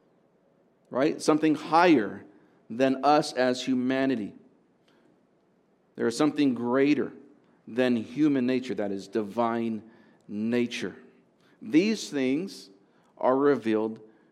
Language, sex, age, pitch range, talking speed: English, male, 50-69, 115-135 Hz, 90 wpm